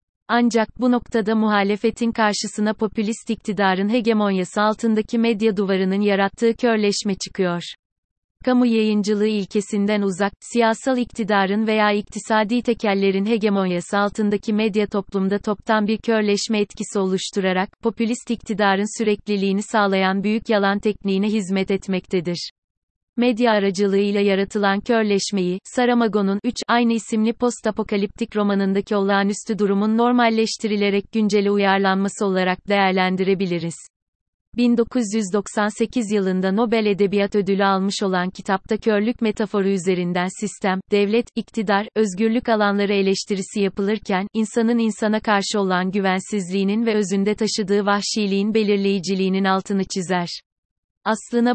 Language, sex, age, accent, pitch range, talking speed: Turkish, female, 30-49, native, 195-220 Hz, 105 wpm